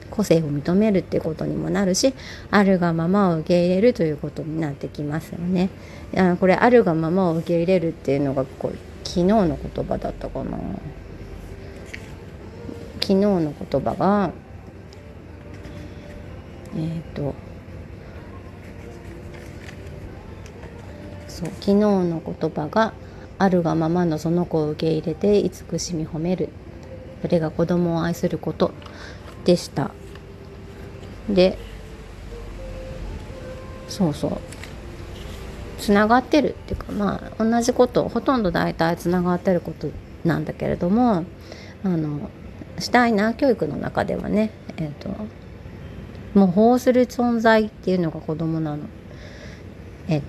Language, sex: Japanese, female